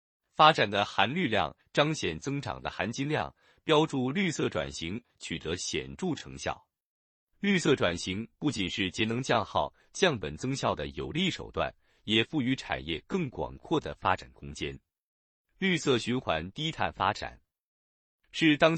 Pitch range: 95-150 Hz